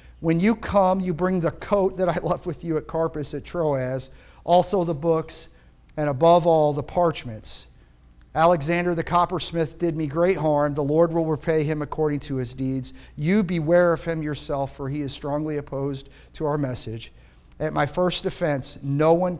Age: 40-59